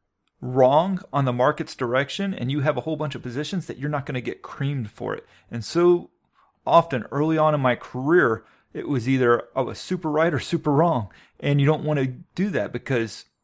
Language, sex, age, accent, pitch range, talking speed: English, male, 30-49, American, 120-150 Hz, 215 wpm